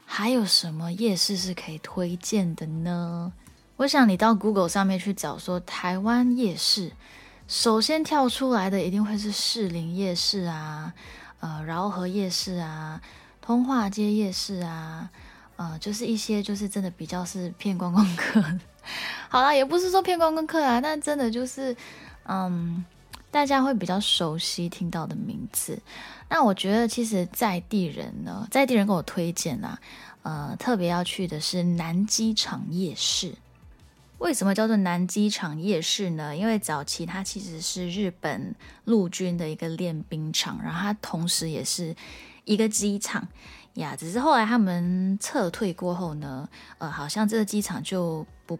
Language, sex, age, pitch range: Chinese, female, 10-29, 175-220 Hz